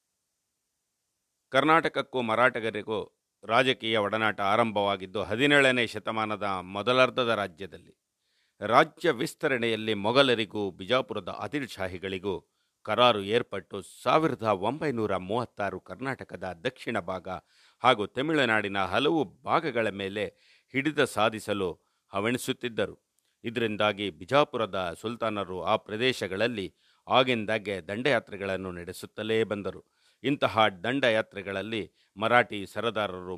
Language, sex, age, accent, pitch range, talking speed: Kannada, male, 50-69, native, 100-120 Hz, 75 wpm